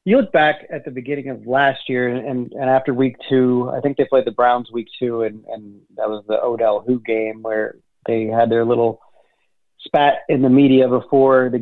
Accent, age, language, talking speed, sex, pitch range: American, 30-49, English, 210 wpm, male, 115-135 Hz